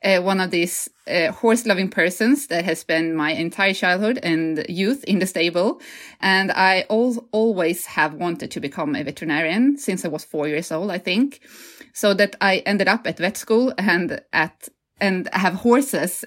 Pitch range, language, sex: 170-235 Hz, Swedish, female